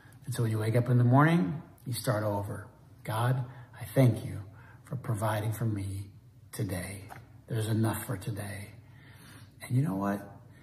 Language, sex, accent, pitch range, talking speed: English, male, American, 115-145 Hz, 165 wpm